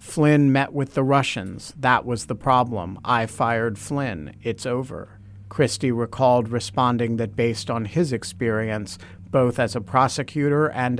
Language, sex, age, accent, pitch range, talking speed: English, male, 50-69, American, 105-130 Hz, 145 wpm